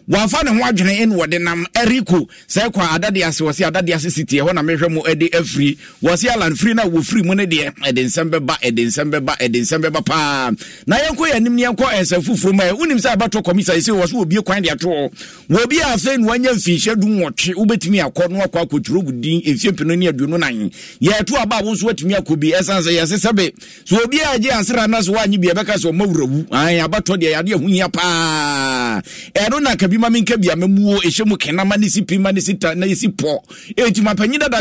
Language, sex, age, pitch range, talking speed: English, male, 50-69, 170-220 Hz, 210 wpm